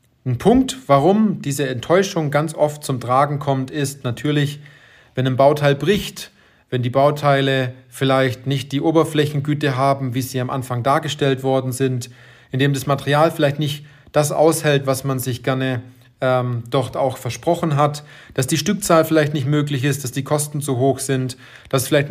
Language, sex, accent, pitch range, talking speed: German, male, German, 130-150 Hz, 170 wpm